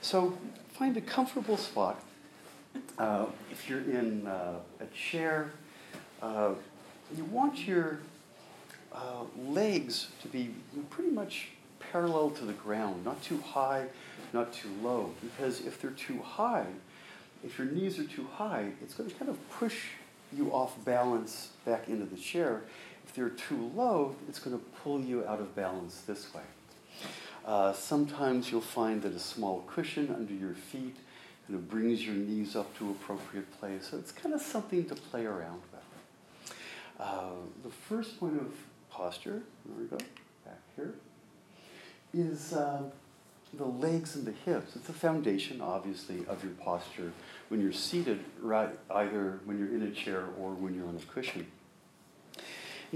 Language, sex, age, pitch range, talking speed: English, male, 50-69, 100-160 Hz, 160 wpm